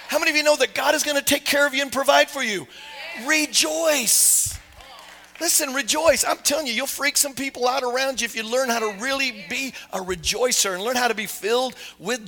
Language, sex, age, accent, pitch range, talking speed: English, male, 40-59, American, 185-250 Hz, 225 wpm